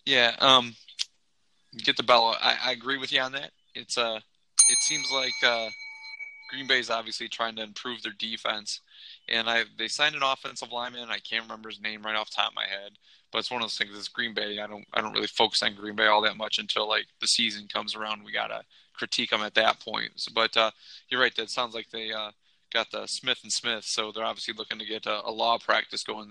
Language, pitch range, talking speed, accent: English, 110-120 Hz, 245 wpm, American